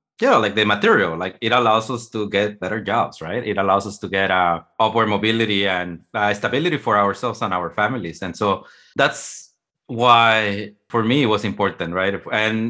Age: 30-49